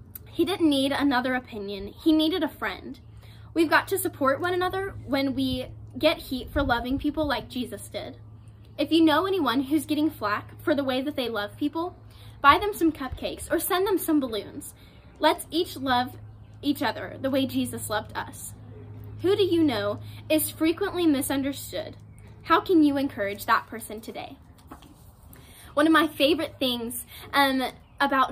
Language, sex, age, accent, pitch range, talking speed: English, female, 10-29, American, 230-305 Hz, 165 wpm